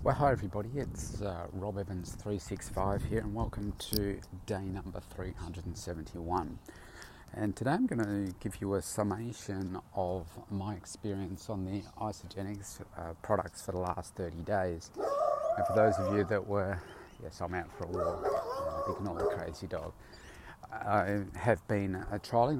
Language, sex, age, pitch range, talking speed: English, male, 30-49, 90-110 Hz, 160 wpm